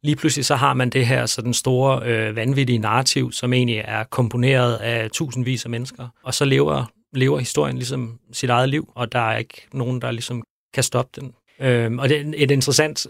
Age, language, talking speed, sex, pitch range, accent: 30-49, Danish, 205 wpm, male, 115-130 Hz, native